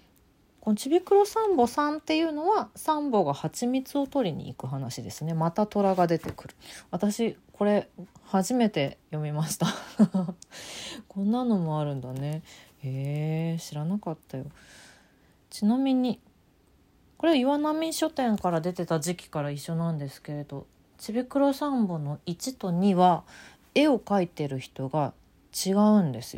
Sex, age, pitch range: female, 40-59, 150-230 Hz